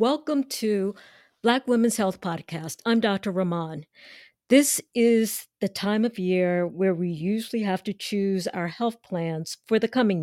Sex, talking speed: female, 160 wpm